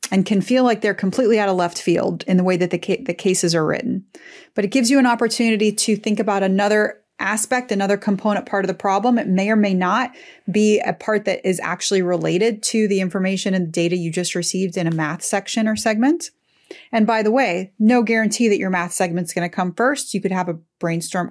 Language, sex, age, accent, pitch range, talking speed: English, female, 30-49, American, 185-225 Hz, 230 wpm